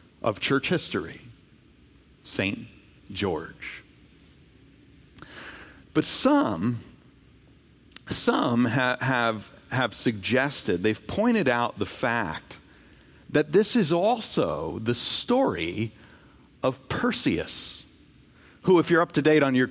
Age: 50-69